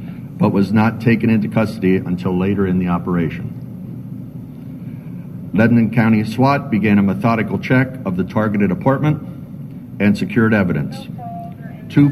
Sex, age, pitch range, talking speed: male, 60-79, 100-125 Hz, 130 wpm